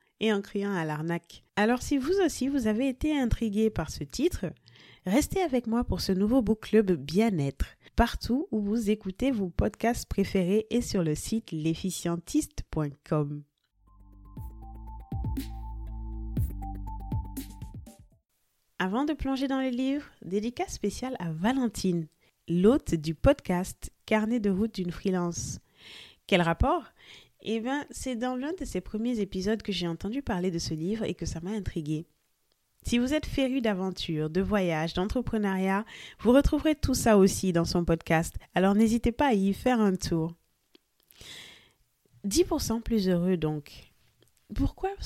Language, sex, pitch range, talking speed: French, female, 170-235 Hz, 140 wpm